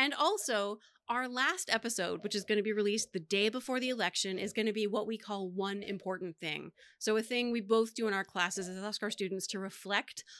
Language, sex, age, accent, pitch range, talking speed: English, female, 30-49, American, 195-245 Hz, 235 wpm